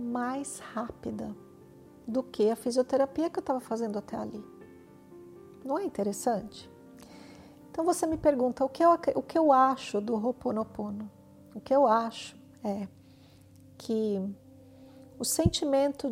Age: 50-69